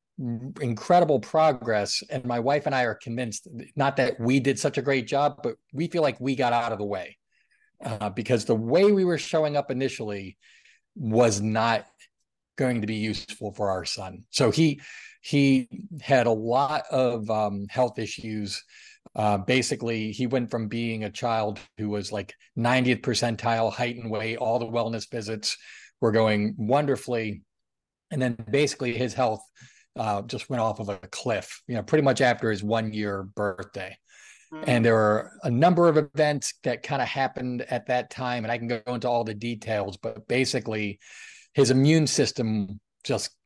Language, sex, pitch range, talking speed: English, male, 105-130 Hz, 175 wpm